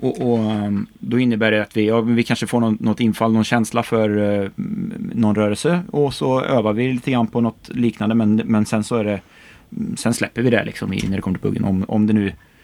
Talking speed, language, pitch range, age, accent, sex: 235 wpm, Swedish, 105-125 Hz, 30-49, native, male